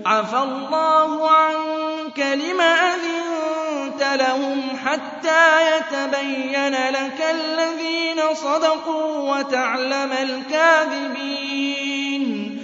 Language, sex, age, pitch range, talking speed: Arabic, male, 20-39, 270-315 Hz, 60 wpm